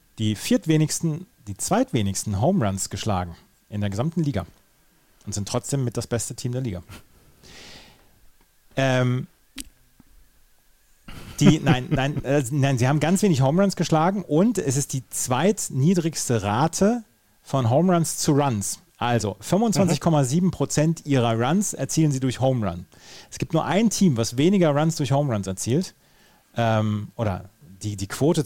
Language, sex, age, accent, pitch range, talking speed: German, male, 40-59, German, 105-150 Hz, 150 wpm